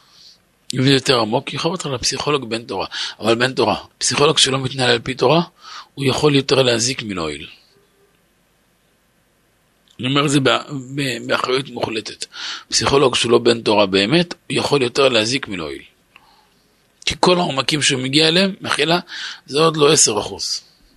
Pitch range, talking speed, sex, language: 110-140 Hz, 145 wpm, male, Hebrew